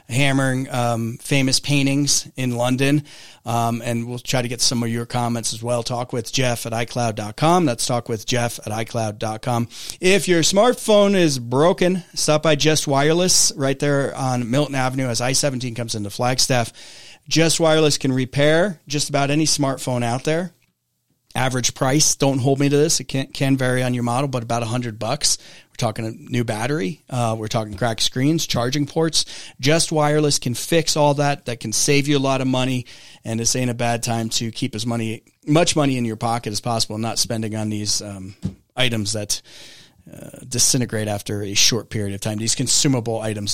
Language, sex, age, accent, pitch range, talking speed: English, male, 30-49, American, 115-145 Hz, 190 wpm